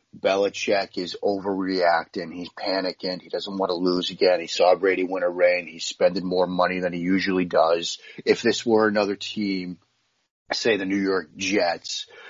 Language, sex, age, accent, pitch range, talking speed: English, male, 30-49, American, 95-125 Hz, 170 wpm